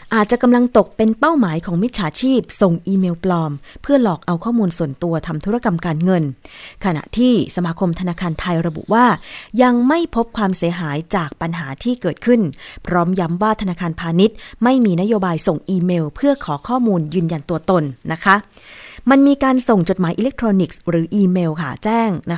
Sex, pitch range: female, 170-225 Hz